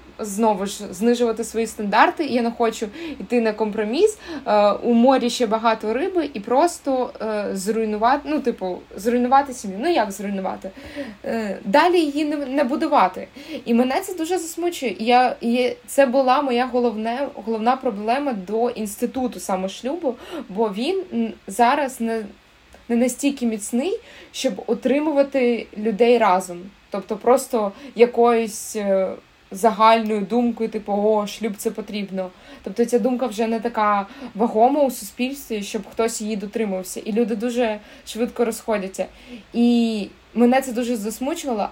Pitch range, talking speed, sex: 220-270 Hz, 140 wpm, female